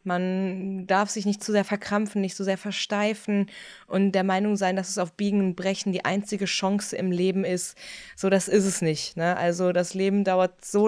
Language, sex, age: German, female, 20-39